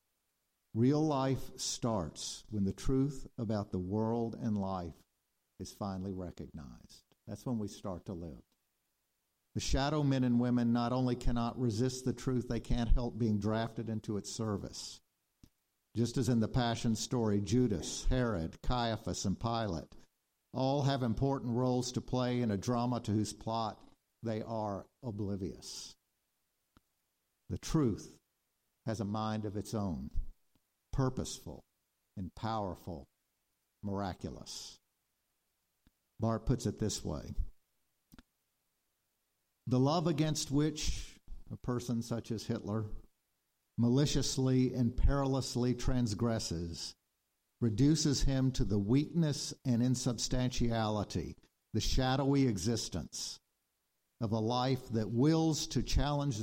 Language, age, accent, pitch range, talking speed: English, 50-69, American, 105-130 Hz, 120 wpm